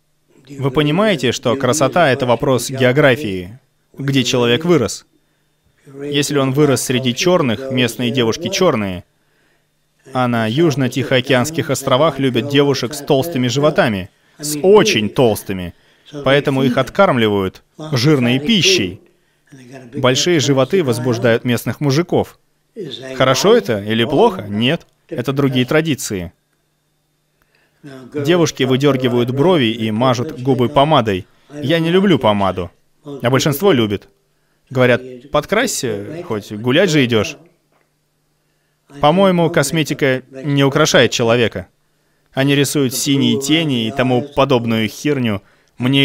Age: 30-49